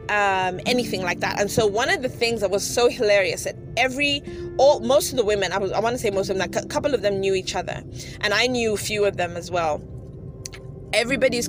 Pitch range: 185-245 Hz